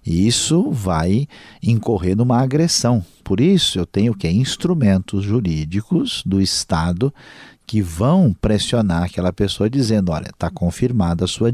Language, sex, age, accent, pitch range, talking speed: Portuguese, male, 50-69, Brazilian, 95-120 Hz, 130 wpm